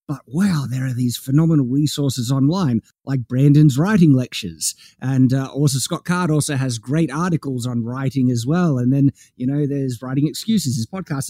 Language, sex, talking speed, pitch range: English, male, 180 wpm, 130-170 Hz